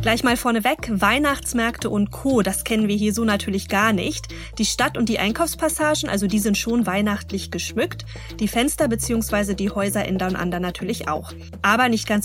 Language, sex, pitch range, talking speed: German, female, 190-240 Hz, 180 wpm